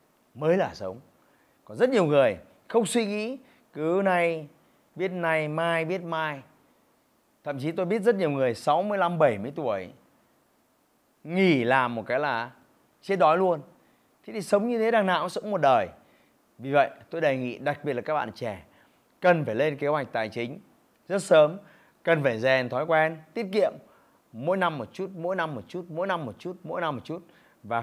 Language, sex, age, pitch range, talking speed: Vietnamese, male, 30-49, 140-195 Hz, 200 wpm